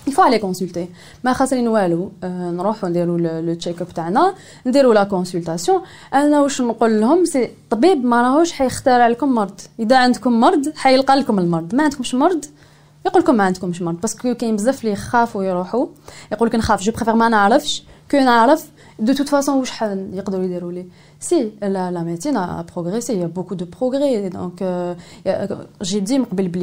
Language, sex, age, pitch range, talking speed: French, female, 20-39, 185-265 Hz, 115 wpm